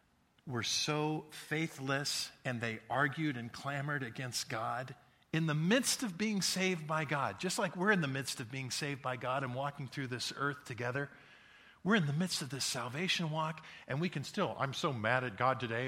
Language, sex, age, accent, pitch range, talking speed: English, male, 50-69, American, 105-140 Hz, 200 wpm